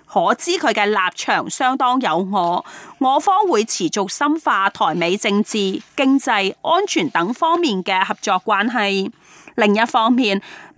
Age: 30-49